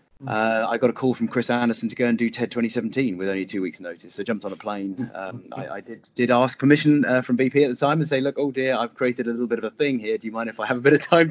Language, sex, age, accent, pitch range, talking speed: English, male, 30-49, British, 110-130 Hz, 330 wpm